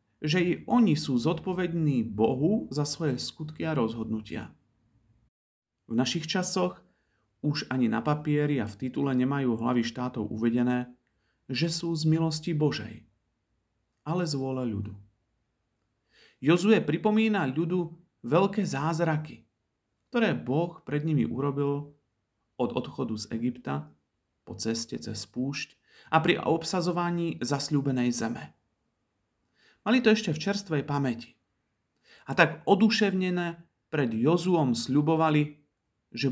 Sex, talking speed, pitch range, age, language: male, 115 wpm, 115-160 Hz, 40-59, Slovak